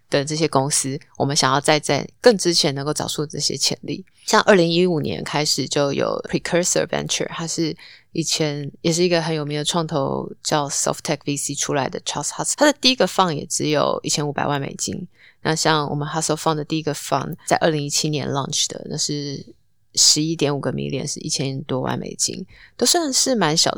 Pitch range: 145-165 Hz